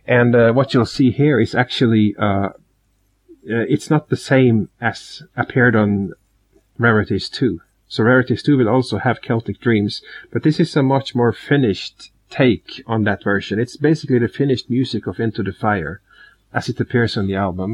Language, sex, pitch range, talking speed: English, male, 105-130 Hz, 180 wpm